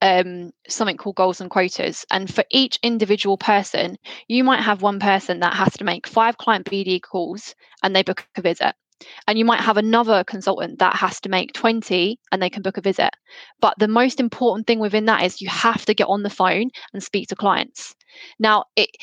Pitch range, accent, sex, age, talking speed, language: 195-235 Hz, British, female, 10-29, 210 wpm, English